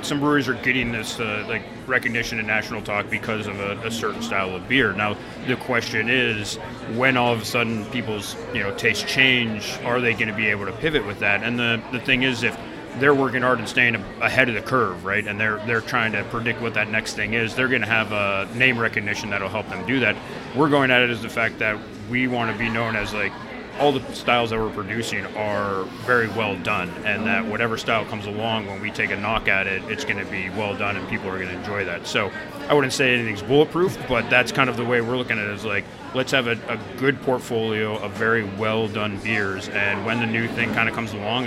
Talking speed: 255 wpm